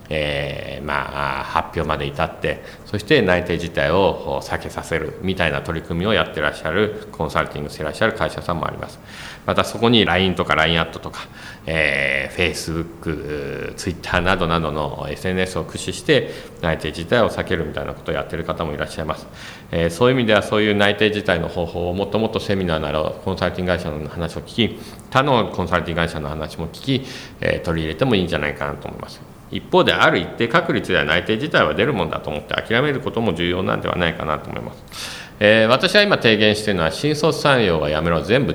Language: Japanese